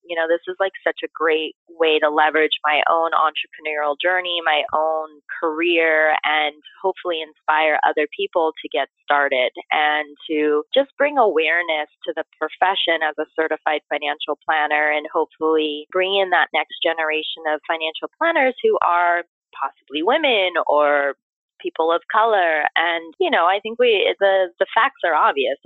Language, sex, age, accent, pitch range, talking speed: English, female, 20-39, American, 150-175 Hz, 160 wpm